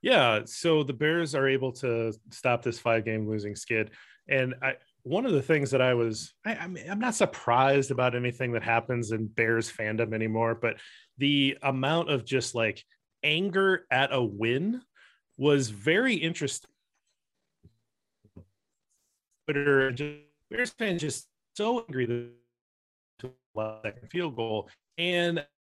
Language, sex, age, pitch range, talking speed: English, male, 30-49, 115-145 Hz, 150 wpm